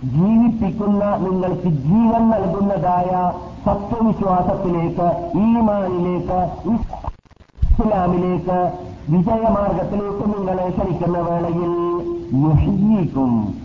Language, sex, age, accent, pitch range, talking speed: Malayalam, male, 50-69, native, 170-225 Hz, 55 wpm